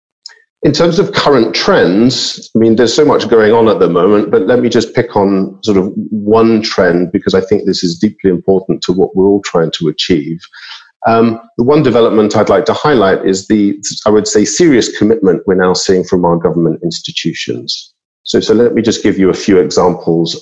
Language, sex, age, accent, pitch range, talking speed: English, male, 50-69, British, 95-120 Hz, 210 wpm